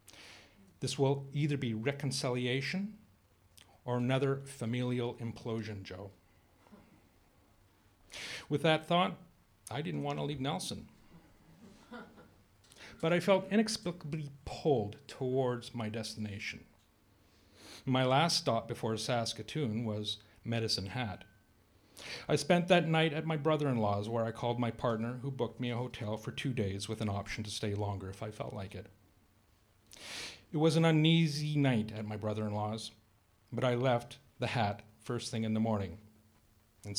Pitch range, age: 105-140 Hz, 50-69